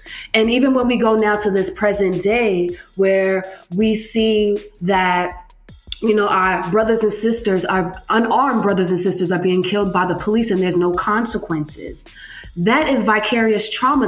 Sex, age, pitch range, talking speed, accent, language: female, 20-39, 180-215 Hz, 165 wpm, American, English